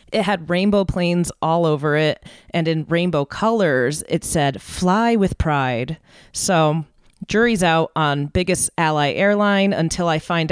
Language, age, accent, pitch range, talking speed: English, 30-49, American, 165-210 Hz, 150 wpm